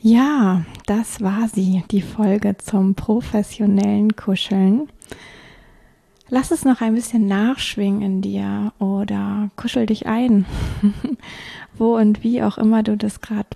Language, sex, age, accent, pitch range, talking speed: German, female, 20-39, German, 200-225 Hz, 130 wpm